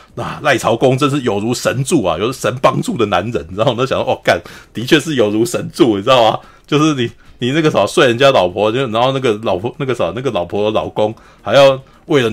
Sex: male